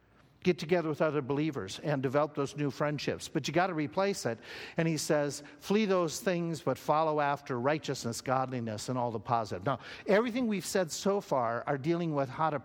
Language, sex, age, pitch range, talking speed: English, male, 50-69, 135-170 Hz, 200 wpm